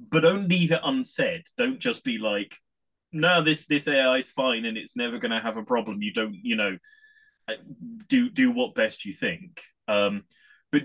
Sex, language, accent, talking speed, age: male, English, British, 195 wpm, 20-39